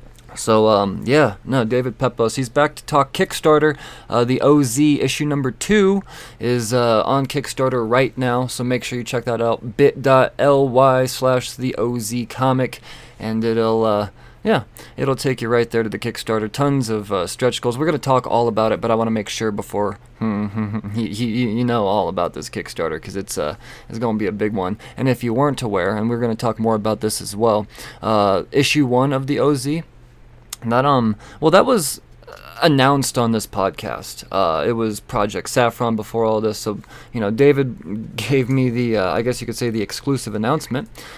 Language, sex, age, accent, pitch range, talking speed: English, male, 20-39, American, 110-135 Hz, 195 wpm